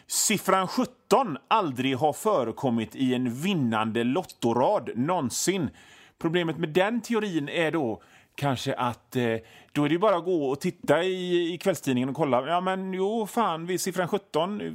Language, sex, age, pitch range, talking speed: Swedish, male, 30-49, 140-195 Hz, 160 wpm